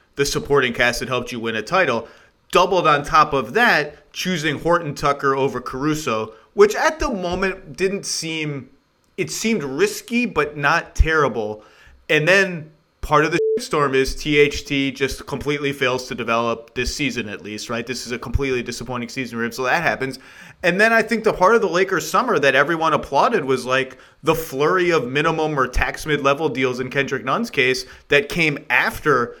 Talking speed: 180 wpm